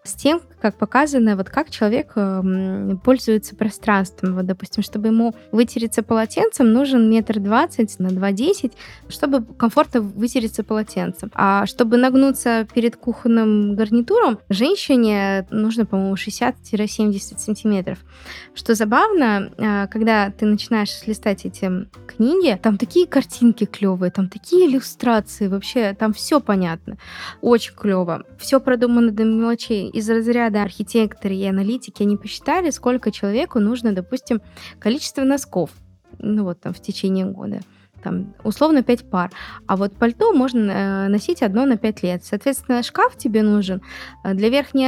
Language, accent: Russian, native